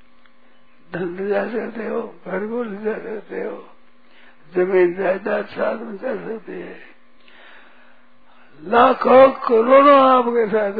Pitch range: 195-245 Hz